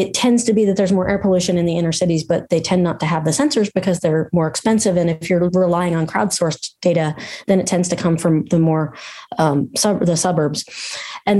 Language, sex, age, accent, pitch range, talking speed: English, female, 30-49, American, 175-225 Hz, 235 wpm